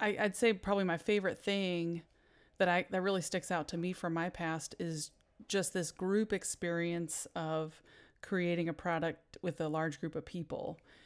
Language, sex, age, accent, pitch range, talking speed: English, female, 30-49, American, 160-190 Hz, 175 wpm